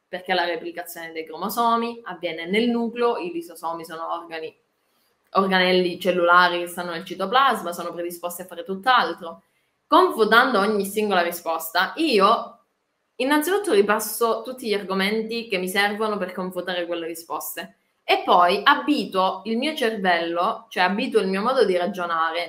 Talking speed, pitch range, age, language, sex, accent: 140 wpm, 170-225 Hz, 20-39, Italian, female, native